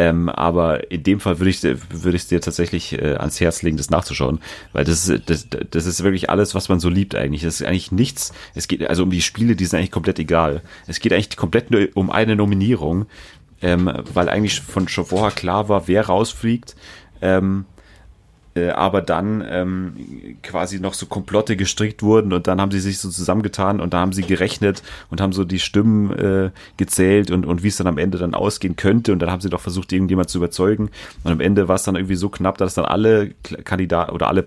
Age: 30-49